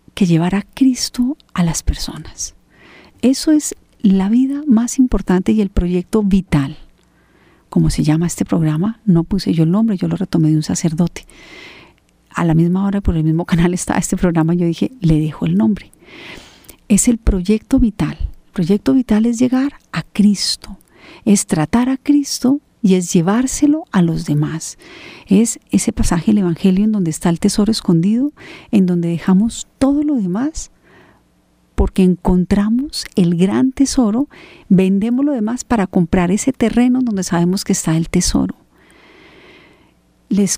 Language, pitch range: Spanish, 175-245 Hz